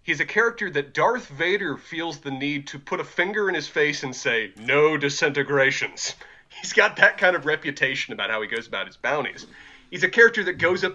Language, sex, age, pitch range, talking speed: English, male, 30-49, 130-195 Hz, 215 wpm